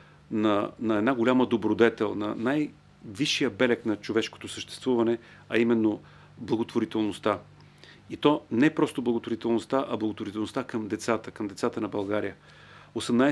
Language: Bulgarian